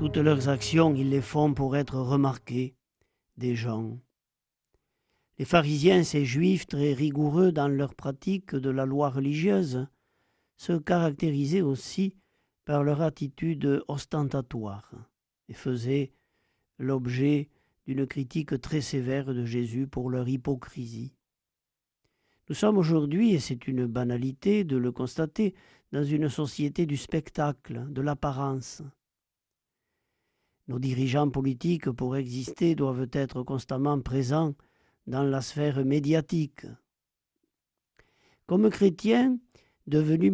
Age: 50-69